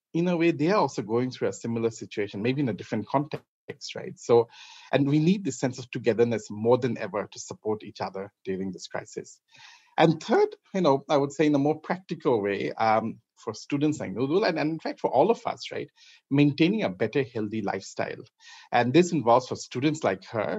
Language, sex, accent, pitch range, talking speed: English, male, Indian, 115-160 Hz, 210 wpm